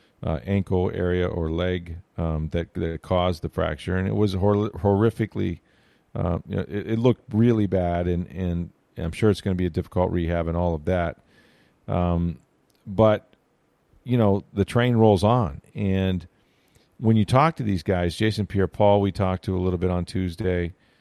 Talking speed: 185 wpm